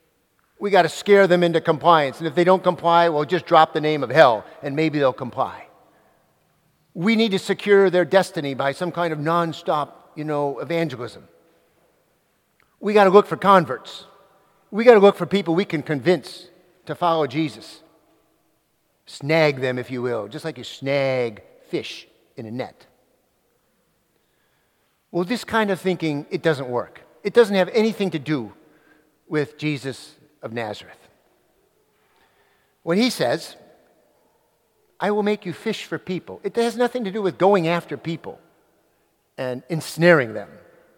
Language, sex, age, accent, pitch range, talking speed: English, male, 50-69, American, 155-200 Hz, 160 wpm